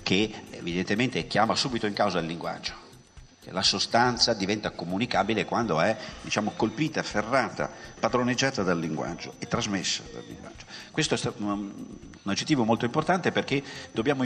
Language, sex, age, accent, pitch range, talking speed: Italian, male, 50-69, native, 90-140 Hz, 140 wpm